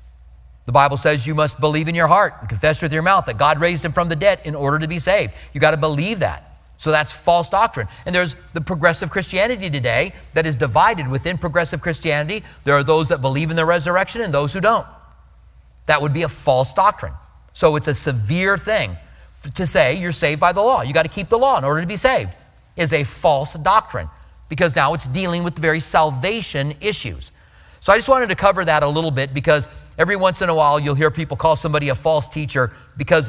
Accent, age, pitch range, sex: American, 40-59, 130-170 Hz, male